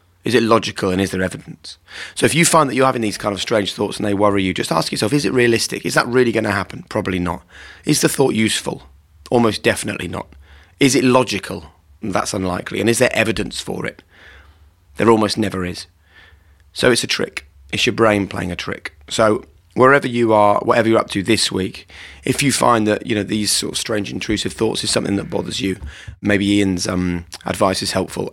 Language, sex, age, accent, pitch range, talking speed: English, male, 30-49, British, 95-110 Hz, 215 wpm